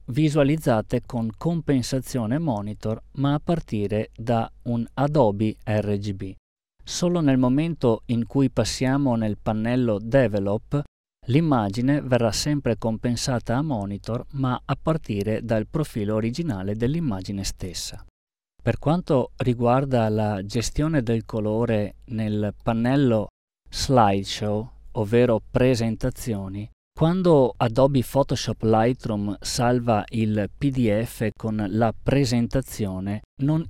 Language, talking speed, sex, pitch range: Italian, 100 wpm, male, 105-135 Hz